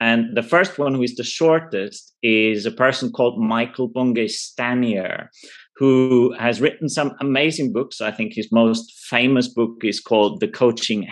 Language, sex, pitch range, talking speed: German, male, 115-145 Hz, 160 wpm